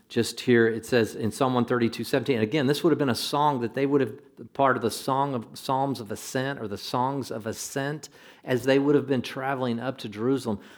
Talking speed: 230 wpm